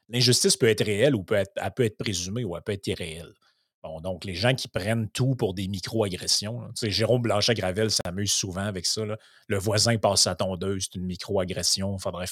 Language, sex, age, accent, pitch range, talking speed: French, male, 30-49, Canadian, 95-120 Hz, 220 wpm